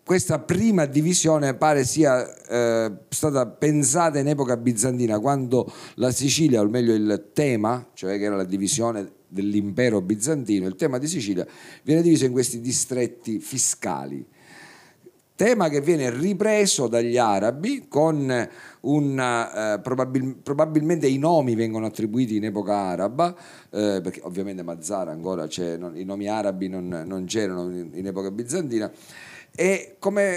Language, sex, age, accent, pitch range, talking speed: Italian, male, 40-59, native, 105-155 Hz, 140 wpm